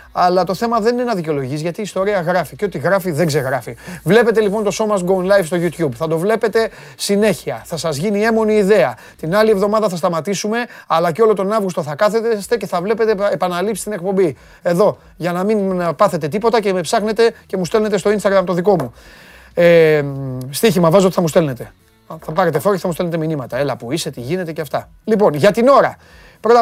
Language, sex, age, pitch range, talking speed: Greek, male, 30-49, 165-220 Hz, 215 wpm